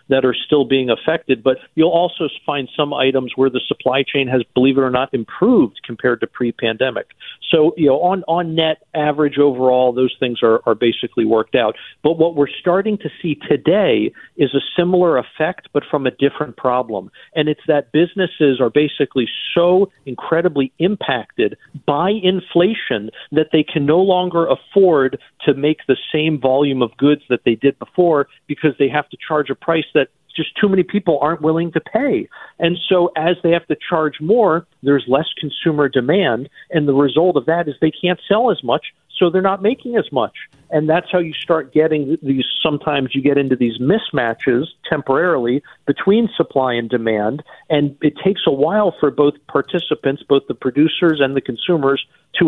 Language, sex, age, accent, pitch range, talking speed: English, male, 50-69, American, 135-170 Hz, 185 wpm